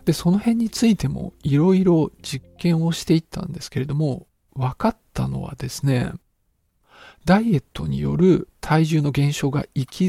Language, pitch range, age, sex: Japanese, 135-180 Hz, 50-69, male